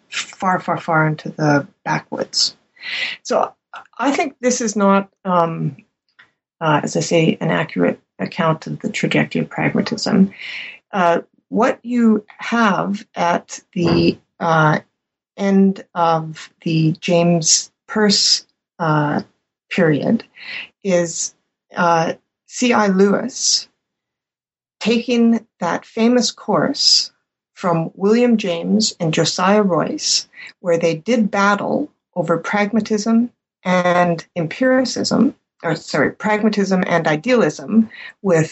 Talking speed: 105 wpm